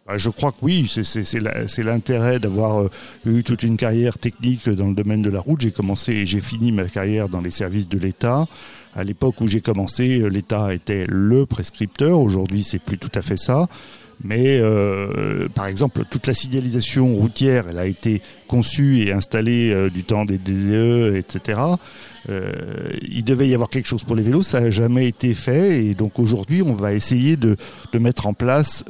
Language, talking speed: French, 200 wpm